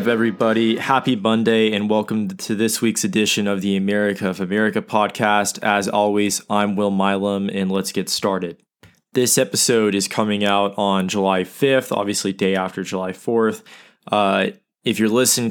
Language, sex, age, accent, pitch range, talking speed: English, male, 20-39, American, 95-110 Hz, 160 wpm